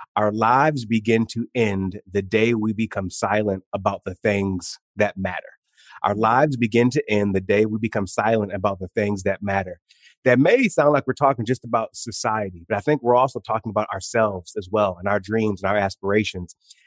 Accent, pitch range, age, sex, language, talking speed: American, 105-140 Hz, 30-49, male, English, 195 wpm